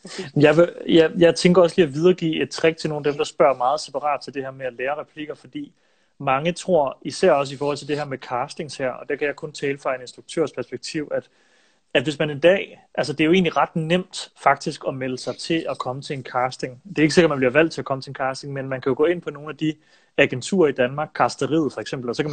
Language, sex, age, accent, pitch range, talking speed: Danish, male, 30-49, native, 140-165 Hz, 280 wpm